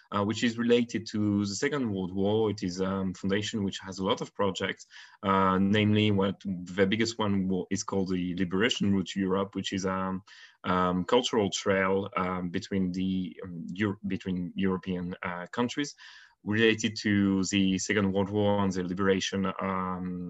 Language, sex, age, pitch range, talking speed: English, male, 20-39, 95-105 Hz, 170 wpm